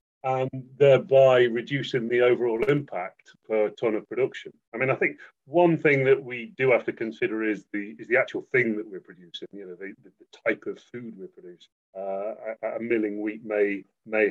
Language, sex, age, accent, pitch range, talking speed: English, male, 30-49, British, 105-135 Hz, 195 wpm